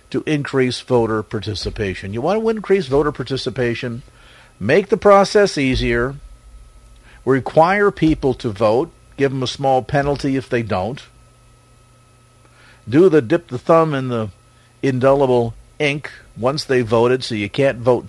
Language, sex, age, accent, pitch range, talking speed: English, male, 50-69, American, 115-140 Hz, 140 wpm